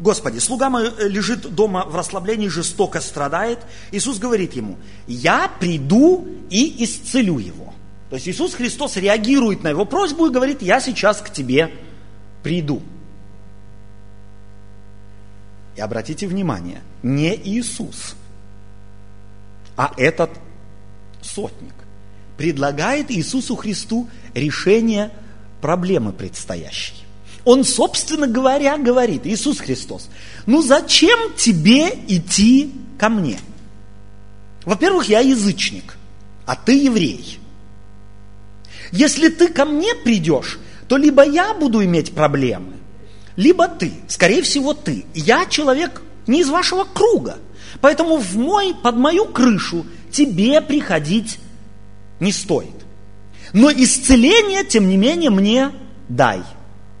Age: 30-49